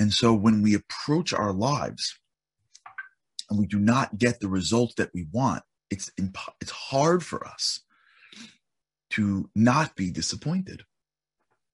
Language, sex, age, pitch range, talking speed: English, male, 30-49, 115-185 Hz, 140 wpm